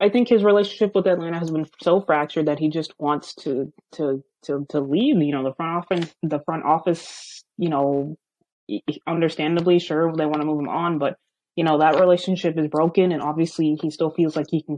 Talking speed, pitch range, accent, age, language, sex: 210 wpm, 150-175 Hz, American, 20-39, English, female